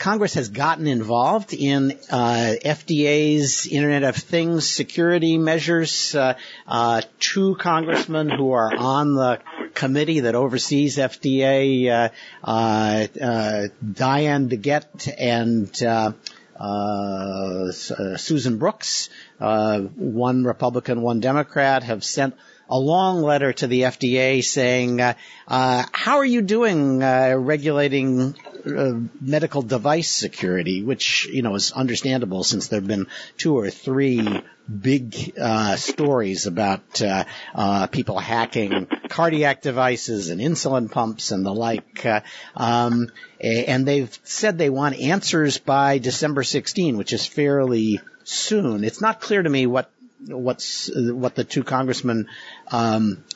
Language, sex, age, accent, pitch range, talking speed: English, male, 50-69, American, 115-145 Hz, 130 wpm